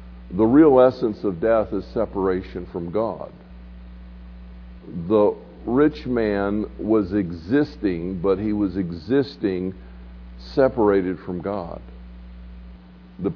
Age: 50-69